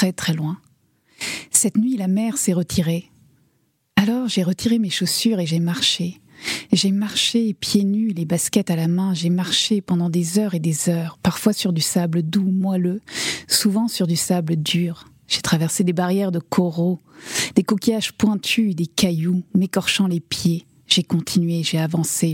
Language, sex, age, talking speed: French, female, 30-49, 170 wpm